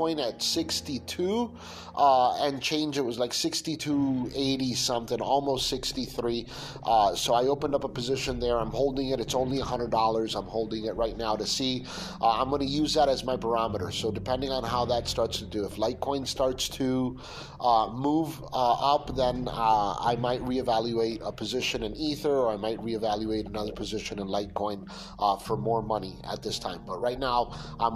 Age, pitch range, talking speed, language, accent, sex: 30-49, 110-140 Hz, 185 wpm, English, American, male